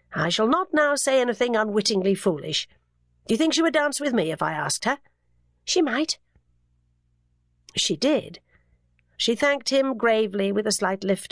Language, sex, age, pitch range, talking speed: English, female, 50-69, 180-250 Hz, 170 wpm